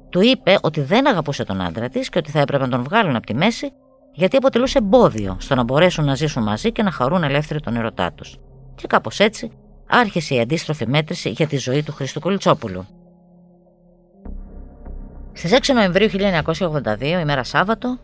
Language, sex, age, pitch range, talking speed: Greek, female, 20-39, 115-185 Hz, 175 wpm